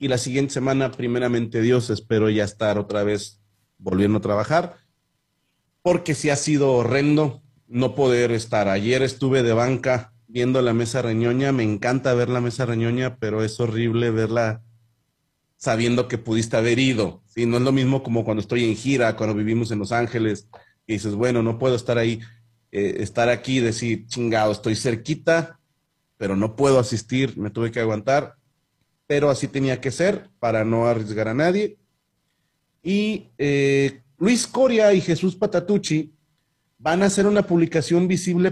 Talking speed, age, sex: 170 wpm, 40-59, male